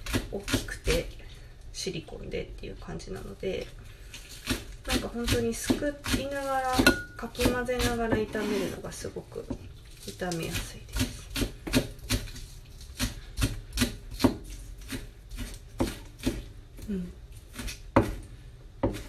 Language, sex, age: Japanese, female, 30-49